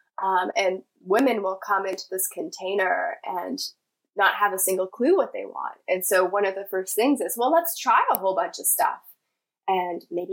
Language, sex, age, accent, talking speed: English, female, 10-29, American, 205 wpm